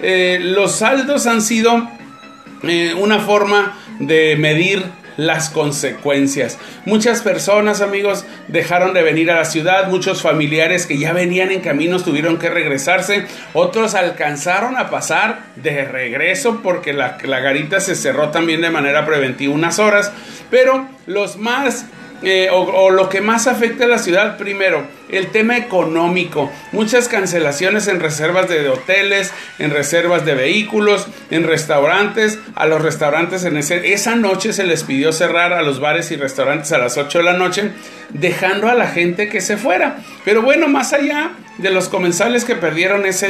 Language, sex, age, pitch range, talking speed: Spanish, male, 40-59, 160-210 Hz, 160 wpm